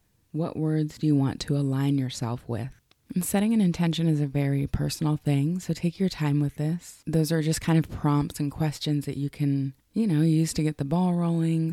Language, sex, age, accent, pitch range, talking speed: English, female, 20-39, American, 140-155 Hz, 215 wpm